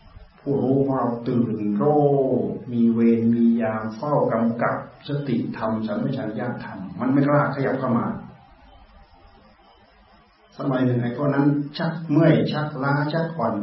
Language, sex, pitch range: Thai, male, 110-150 Hz